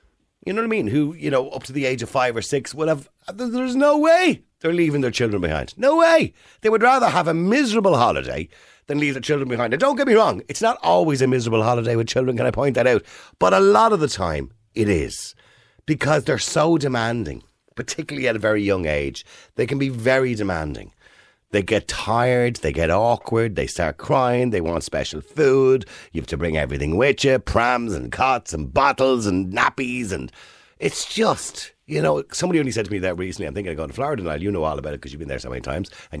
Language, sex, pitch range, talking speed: English, male, 100-160 Hz, 230 wpm